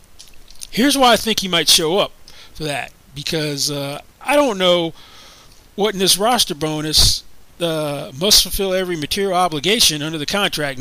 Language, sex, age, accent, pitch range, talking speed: English, male, 40-59, American, 140-195 Hz, 160 wpm